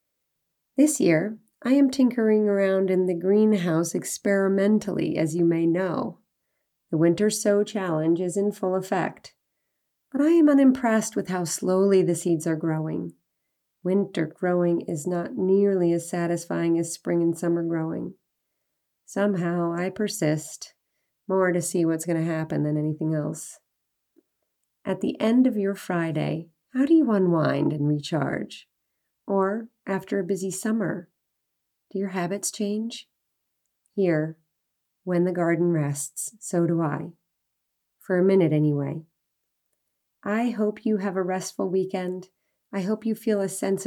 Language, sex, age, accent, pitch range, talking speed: English, female, 30-49, American, 170-200 Hz, 140 wpm